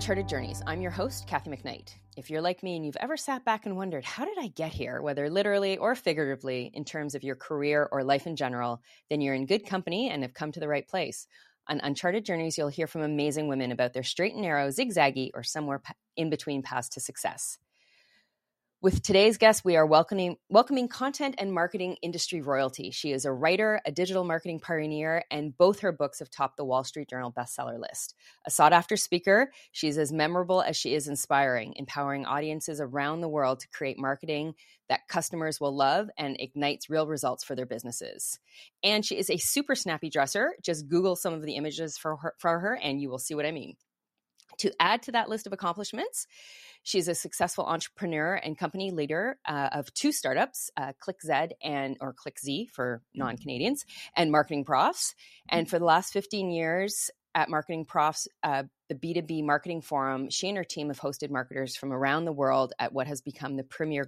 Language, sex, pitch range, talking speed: English, female, 135-180 Hz, 200 wpm